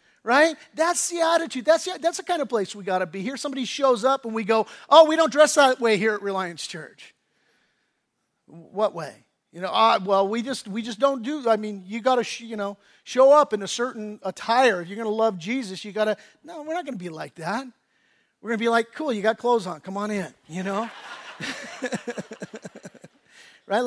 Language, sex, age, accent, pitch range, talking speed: English, male, 40-59, American, 210-275 Hz, 215 wpm